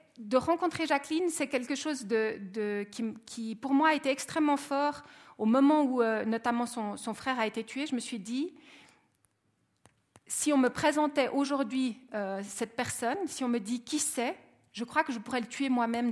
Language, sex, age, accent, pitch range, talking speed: French, female, 40-59, French, 230-290 Hz, 195 wpm